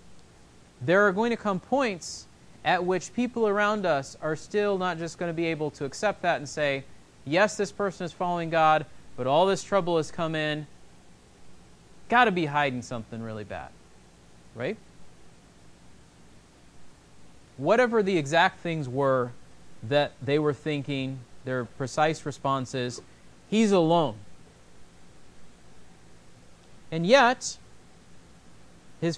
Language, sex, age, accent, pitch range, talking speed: English, male, 30-49, American, 135-205 Hz, 130 wpm